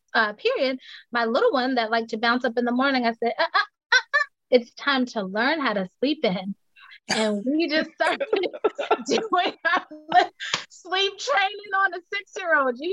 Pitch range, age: 220-290 Hz, 20-39